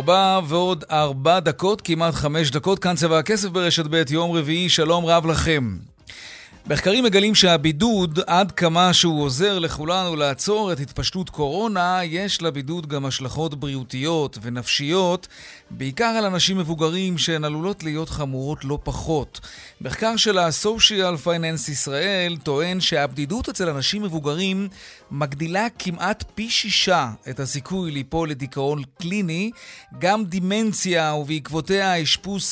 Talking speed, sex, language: 125 wpm, male, Hebrew